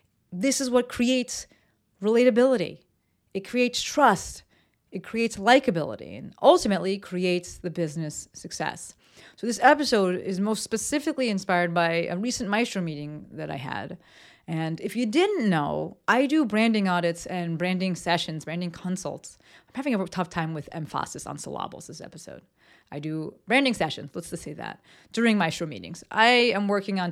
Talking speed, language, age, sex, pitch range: 160 wpm, English, 30-49, female, 170-220 Hz